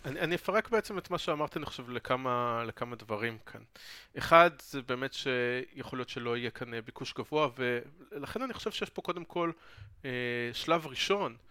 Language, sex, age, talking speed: Hebrew, male, 30-49, 170 wpm